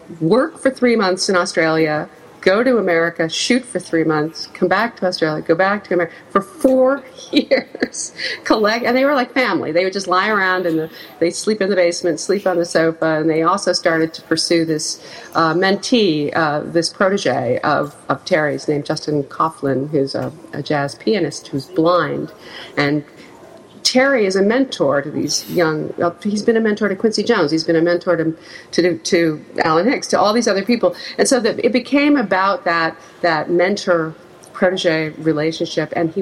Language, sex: English, female